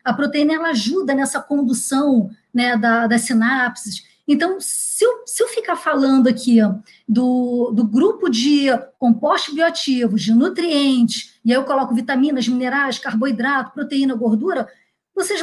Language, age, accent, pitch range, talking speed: Portuguese, 20-39, Brazilian, 235-300 Hz, 130 wpm